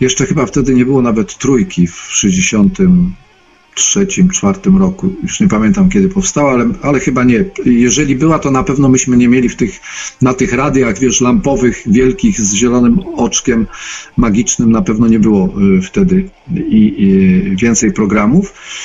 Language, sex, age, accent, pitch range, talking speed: Polish, male, 50-69, native, 120-195 Hz, 155 wpm